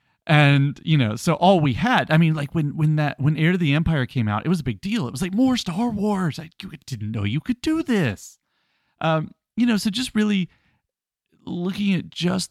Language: English